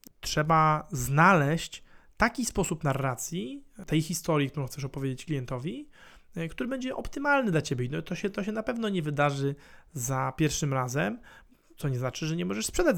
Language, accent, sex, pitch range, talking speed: Polish, native, male, 140-185 Hz, 155 wpm